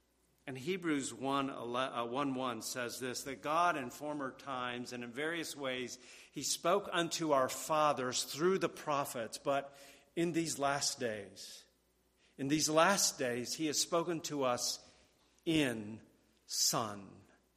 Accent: American